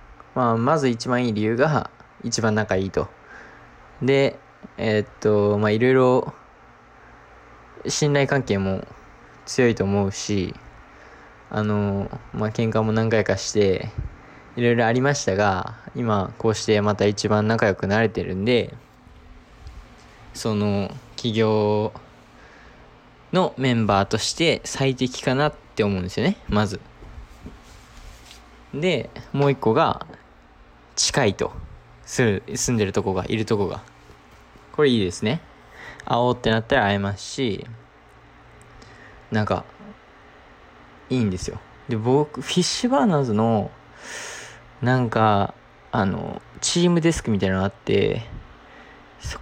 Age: 20-39